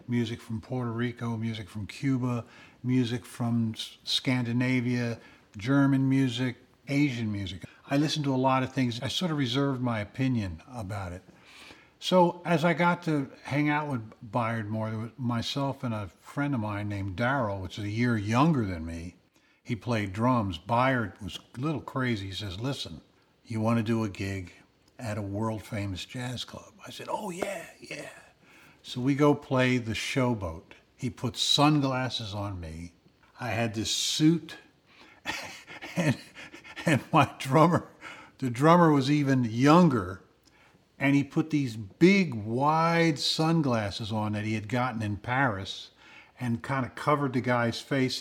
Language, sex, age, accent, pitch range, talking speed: English, male, 60-79, American, 110-135 Hz, 160 wpm